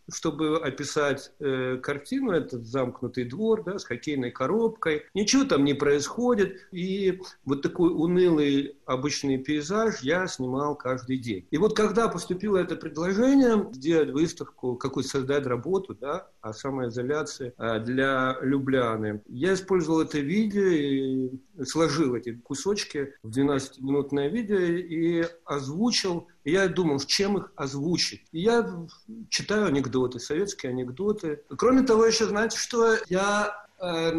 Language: Russian